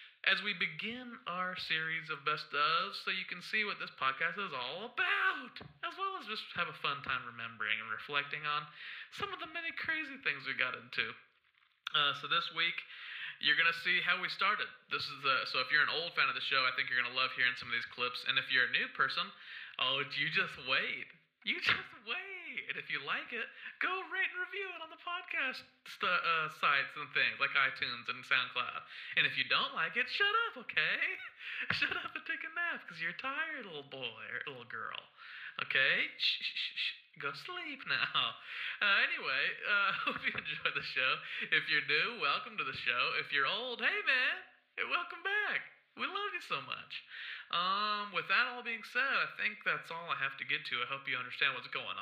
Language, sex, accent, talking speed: English, male, American, 215 wpm